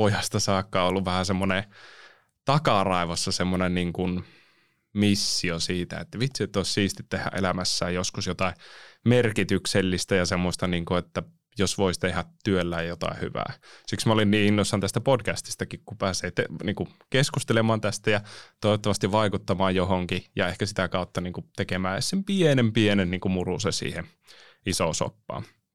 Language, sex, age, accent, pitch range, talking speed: Finnish, male, 20-39, native, 90-105 Hz, 150 wpm